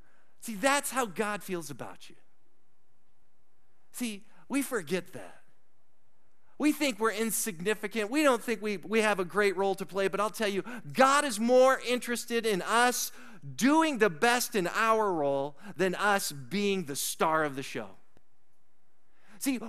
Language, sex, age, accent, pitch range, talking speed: English, male, 40-59, American, 220-275 Hz, 155 wpm